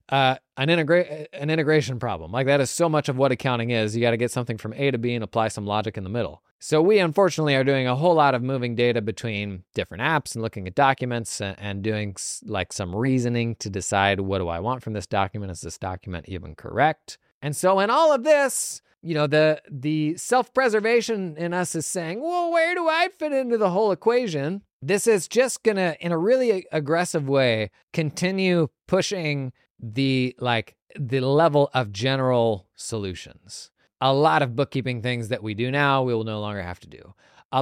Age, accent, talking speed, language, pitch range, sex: 20-39, American, 205 wpm, English, 110-160 Hz, male